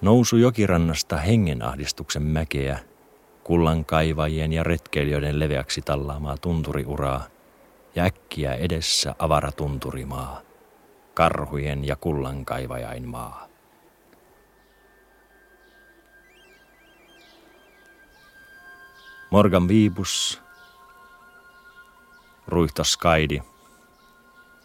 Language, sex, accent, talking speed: Finnish, male, native, 55 wpm